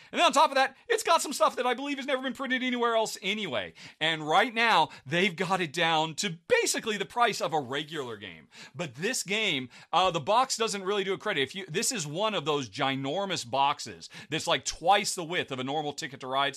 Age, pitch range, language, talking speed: 40-59, 140-210 Hz, English, 240 wpm